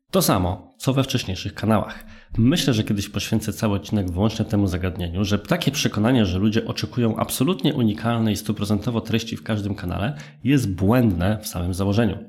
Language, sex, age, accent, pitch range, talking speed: Polish, male, 20-39, native, 95-115 Hz, 160 wpm